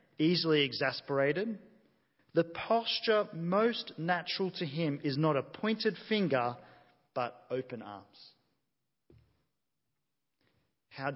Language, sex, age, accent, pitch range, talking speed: English, male, 40-59, Australian, 140-180 Hz, 90 wpm